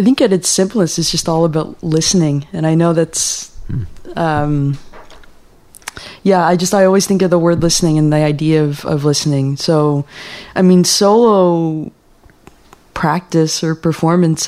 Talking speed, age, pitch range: 160 wpm, 20-39, 150-175 Hz